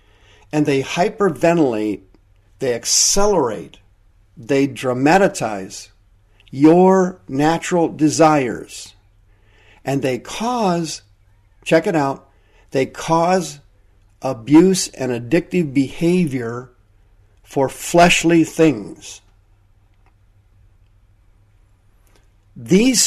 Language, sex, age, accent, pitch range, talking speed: English, male, 50-69, American, 100-150 Hz, 70 wpm